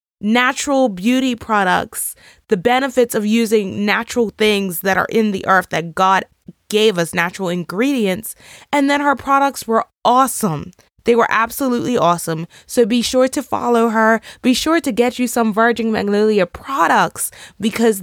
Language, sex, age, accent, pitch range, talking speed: English, female, 20-39, American, 190-250 Hz, 155 wpm